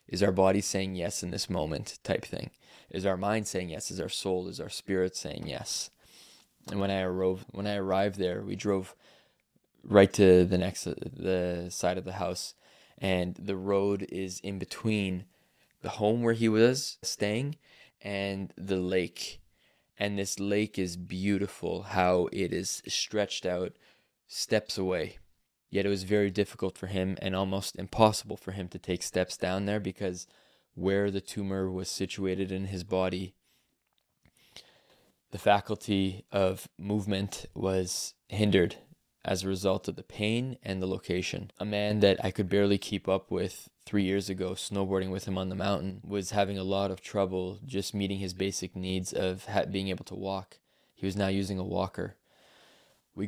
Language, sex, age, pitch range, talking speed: English, male, 20-39, 95-100 Hz, 170 wpm